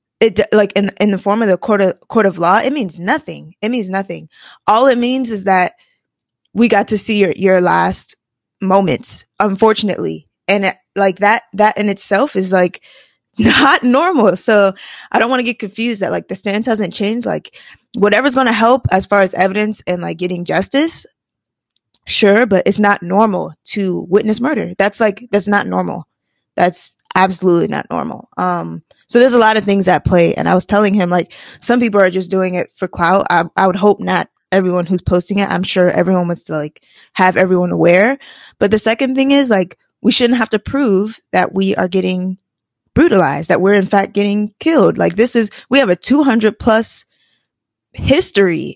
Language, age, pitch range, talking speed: English, 20-39, 185-225 Hz, 195 wpm